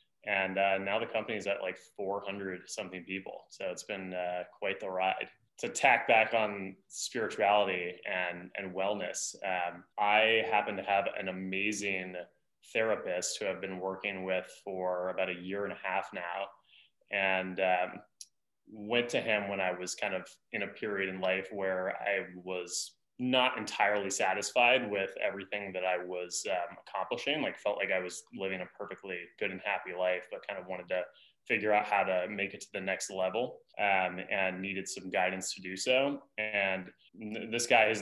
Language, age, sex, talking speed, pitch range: English, 20-39, male, 180 wpm, 95-105 Hz